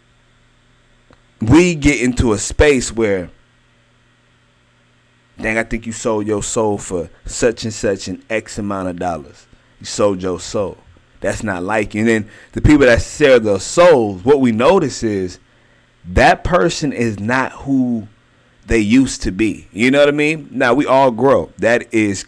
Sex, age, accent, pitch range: male, 30-49, American, 110-140 Hz